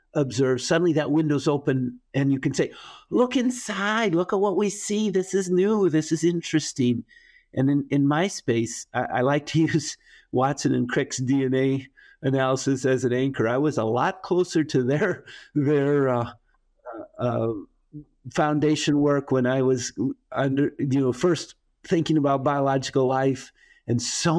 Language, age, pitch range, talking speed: English, 50-69, 120-155 Hz, 160 wpm